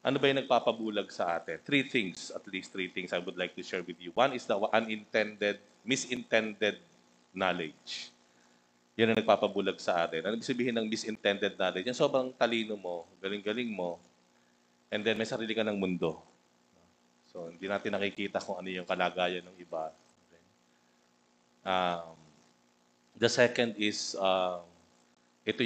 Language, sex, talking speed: English, male, 150 wpm